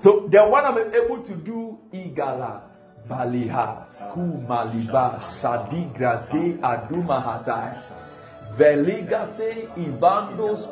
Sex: male